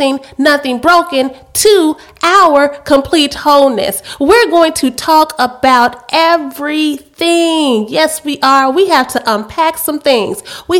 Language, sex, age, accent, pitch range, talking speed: English, female, 30-49, American, 245-300 Hz, 120 wpm